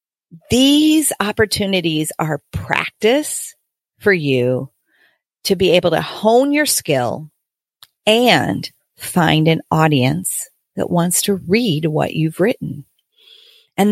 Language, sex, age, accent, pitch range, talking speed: English, female, 40-59, American, 155-220 Hz, 110 wpm